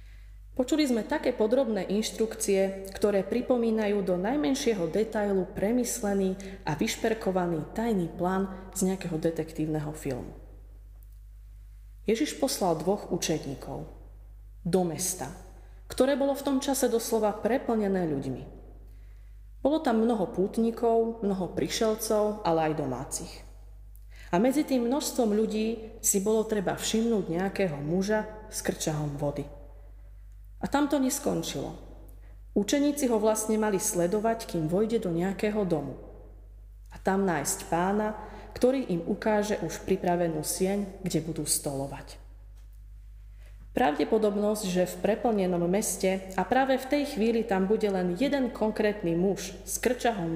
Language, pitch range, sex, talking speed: Slovak, 150-220 Hz, female, 120 wpm